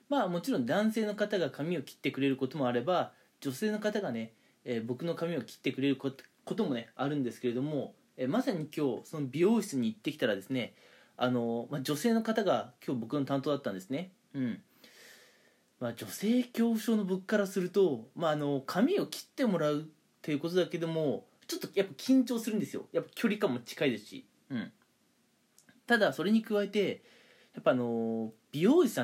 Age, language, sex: 20-39, Japanese, male